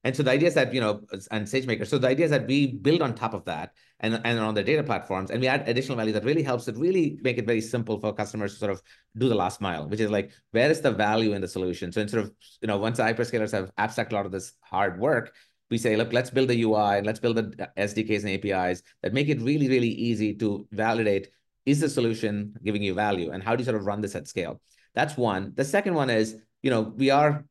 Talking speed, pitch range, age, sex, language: 270 wpm, 100-120 Hz, 30-49, male, English